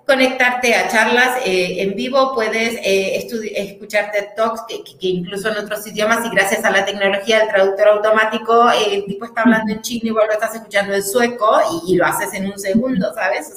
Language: Spanish